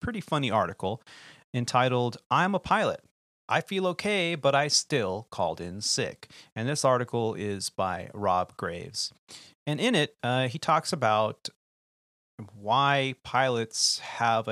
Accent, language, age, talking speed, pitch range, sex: American, English, 30-49, 135 wpm, 110-145 Hz, male